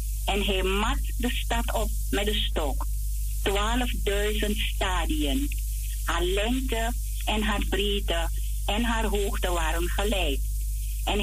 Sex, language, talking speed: female, English, 120 wpm